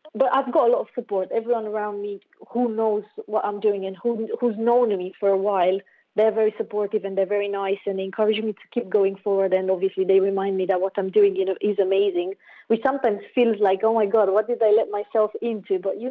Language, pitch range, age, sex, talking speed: English, 200-240 Hz, 30-49, female, 240 wpm